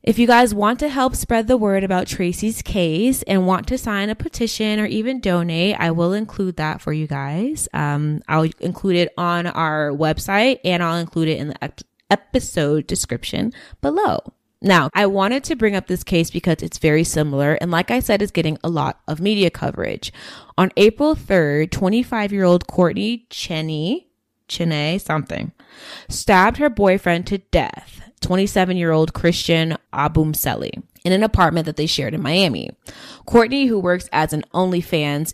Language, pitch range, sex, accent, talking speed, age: English, 160-215 Hz, female, American, 165 wpm, 20-39